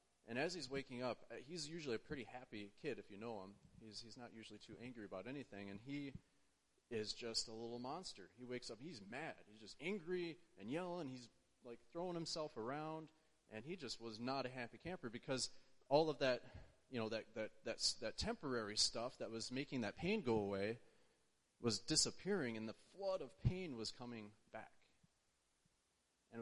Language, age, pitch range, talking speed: English, 30-49, 110-145 Hz, 185 wpm